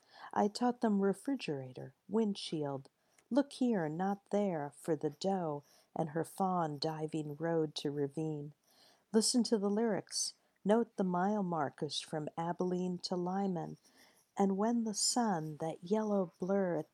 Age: 50-69